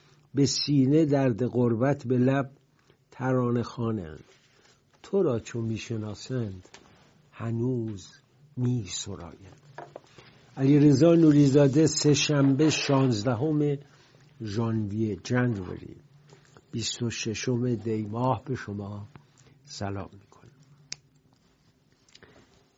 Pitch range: 115-145 Hz